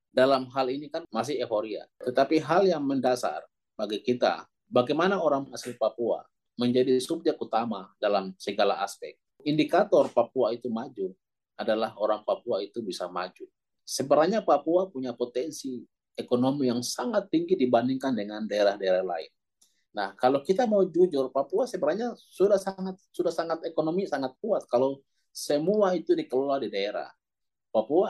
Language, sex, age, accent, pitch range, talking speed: Indonesian, male, 30-49, native, 115-165 Hz, 140 wpm